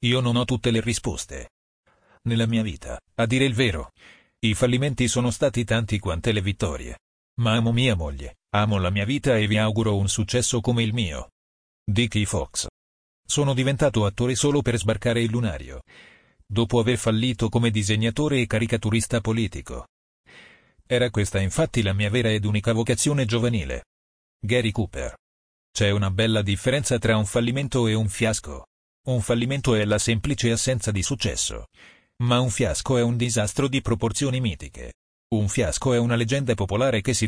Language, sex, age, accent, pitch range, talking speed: Italian, male, 40-59, native, 100-120 Hz, 165 wpm